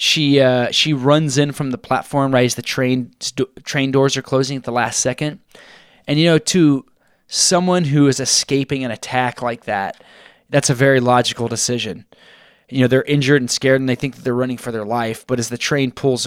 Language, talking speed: English, 215 wpm